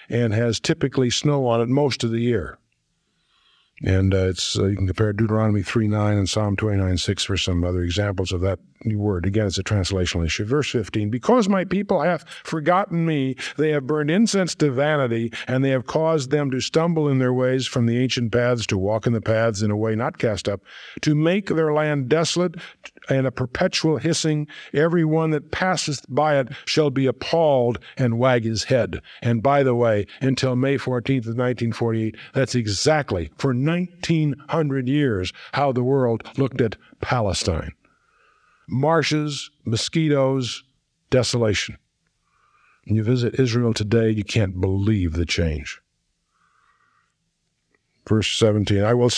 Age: 50-69